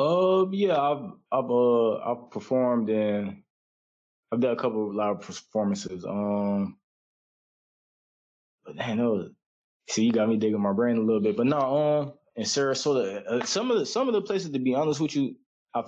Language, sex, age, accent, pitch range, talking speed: English, male, 20-39, American, 100-120 Hz, 190 wpm